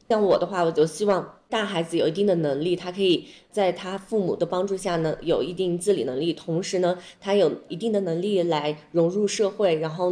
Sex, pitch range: female, 165-195 Hz